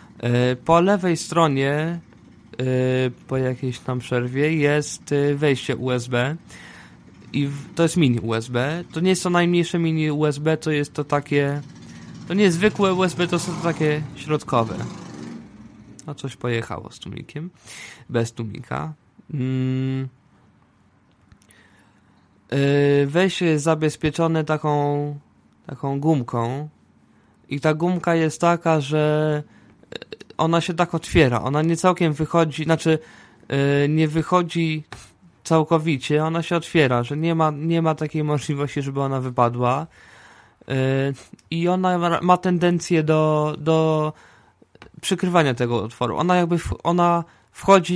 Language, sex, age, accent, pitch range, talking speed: Polish, male, 20-39, native, 130-165 Hz, 120 wpm